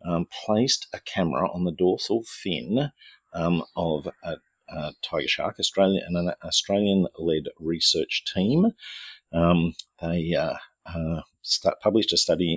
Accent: Australian